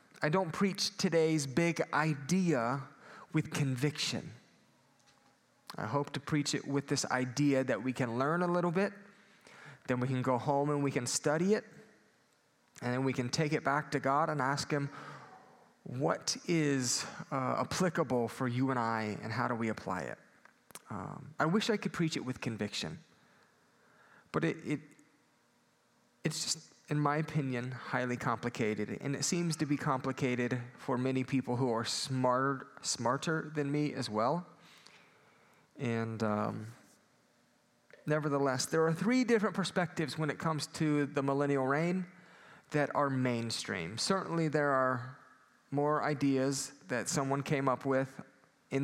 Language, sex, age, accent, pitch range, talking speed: English, male, 30-49, American, 125-155 Hz, 150 wpm